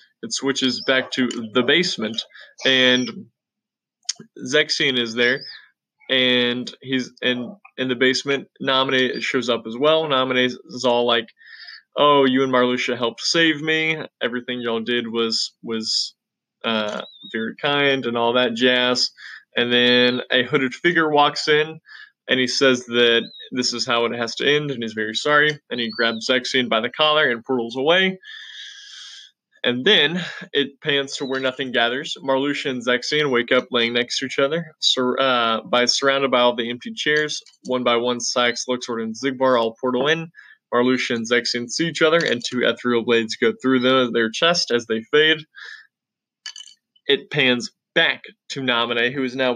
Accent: American